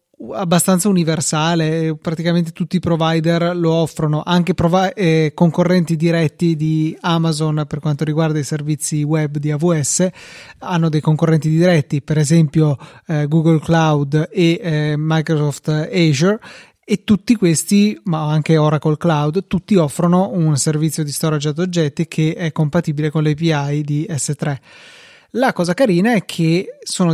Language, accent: Italian, native